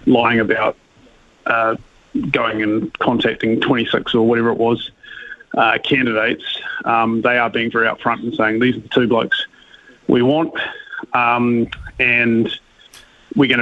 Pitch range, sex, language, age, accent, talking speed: 115-135 Hz, male, English, 30-49, Australian, 140 wpm